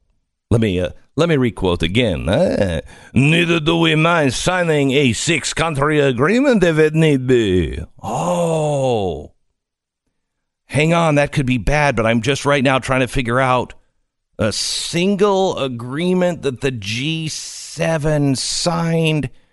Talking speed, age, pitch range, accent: 135 wpm, 50-69, 125-175 Hz, American